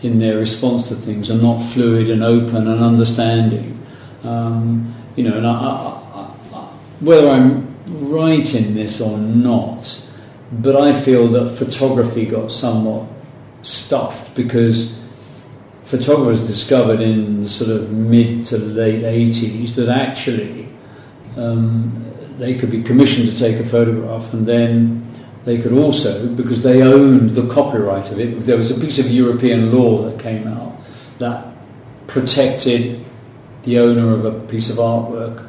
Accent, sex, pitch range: British, male, 115-135 Hz